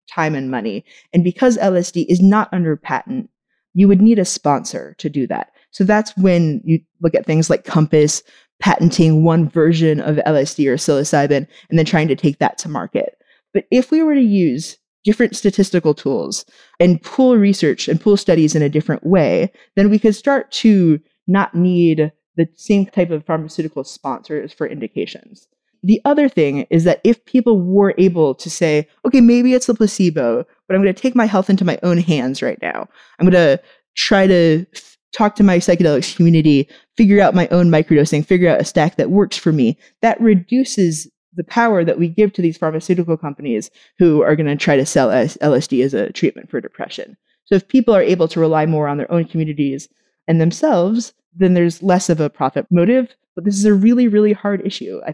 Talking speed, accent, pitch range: 200 wpm, American, 155-205 Hz